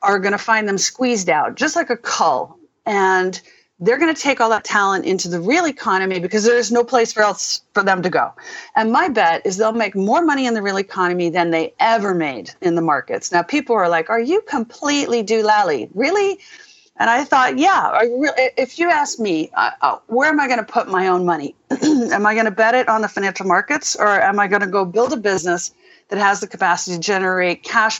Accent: American